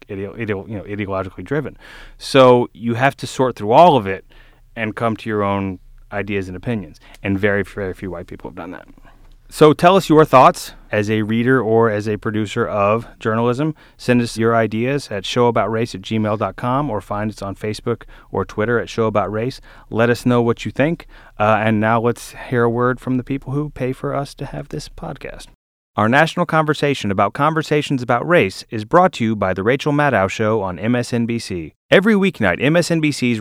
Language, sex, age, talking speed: English, male, 30-49, 190 wpm